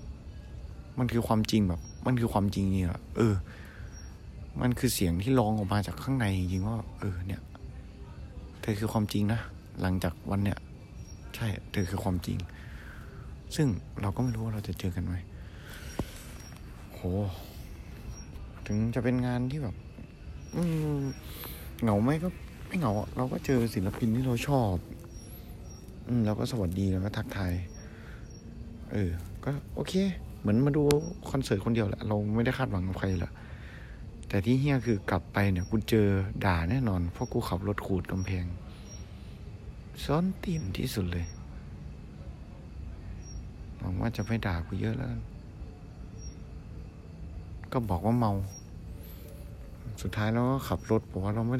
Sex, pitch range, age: male, 90-115 Hz, 60-79